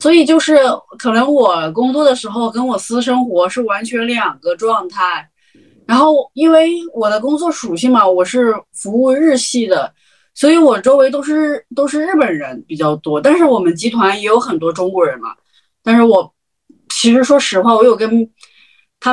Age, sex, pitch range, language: 20-39, female, 205-280 Hz, Chinese